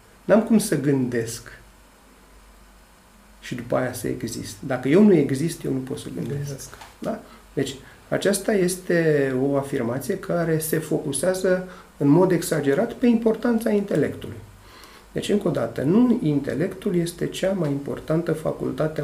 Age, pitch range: 40-59, 125-180 Hz